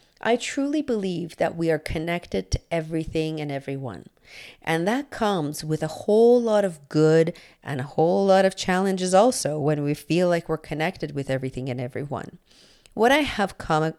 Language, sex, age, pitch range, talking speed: English, female, 50-69, 145-195 Hz, 175 wpm